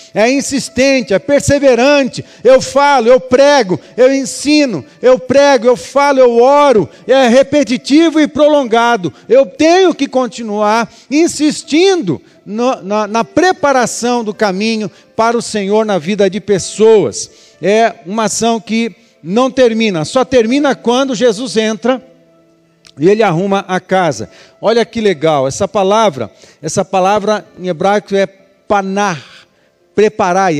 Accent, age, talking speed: Brazilian, 50-69, 125 wpm